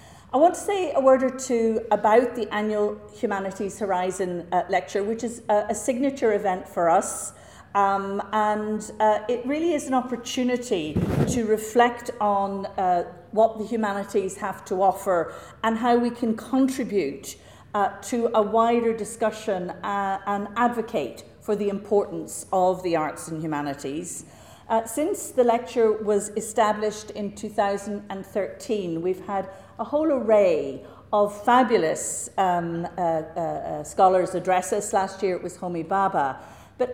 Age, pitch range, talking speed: 50-69, 180-225 Hz, 150 wpm